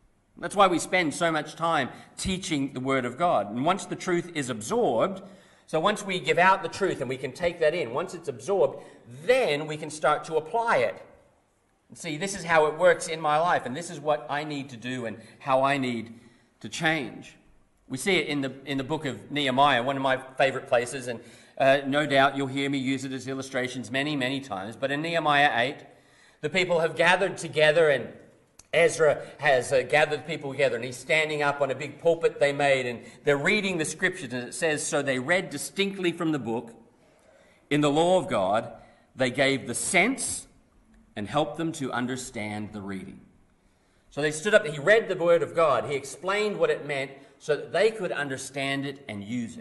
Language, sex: English, male